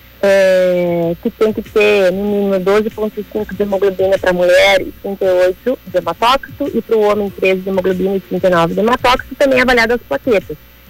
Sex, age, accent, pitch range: female, 30-49, Brazilian, 200-260 Hz